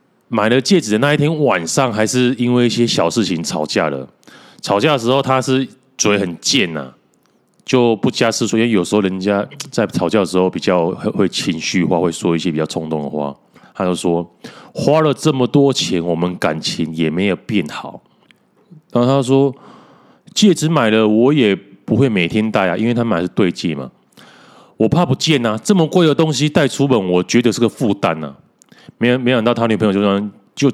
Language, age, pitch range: Chinese, 30-49, 100-140 Hz